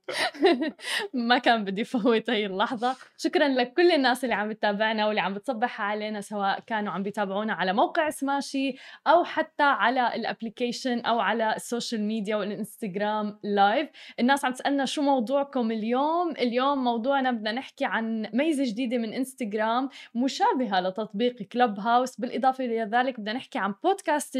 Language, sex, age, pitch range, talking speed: Arabic, female, 20-39, 220-275 Hz, 150 wpm